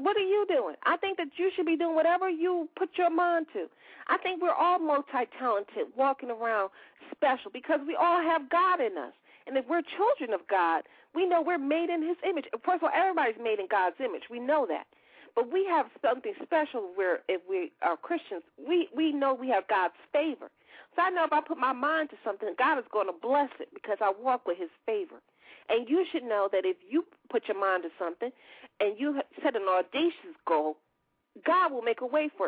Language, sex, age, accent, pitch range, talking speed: English, female, 40-59, American, 240-360 Hz, 220 wpm